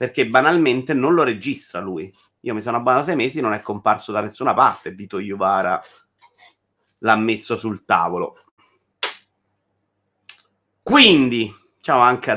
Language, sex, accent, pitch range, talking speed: Italian, male, native, 100-140 Hz, 135 wpm